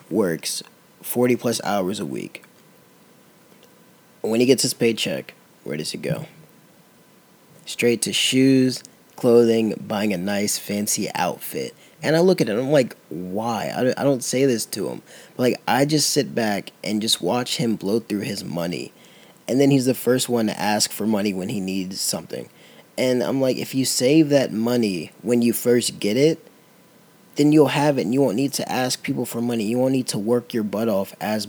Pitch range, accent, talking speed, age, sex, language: 105-125 Hz, American, 190 wpm, 20-39, male, English